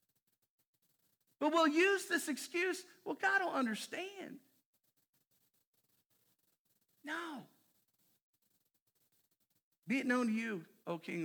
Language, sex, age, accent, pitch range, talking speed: English, male, 50-69, American, 165-220 Hz, 90 wpm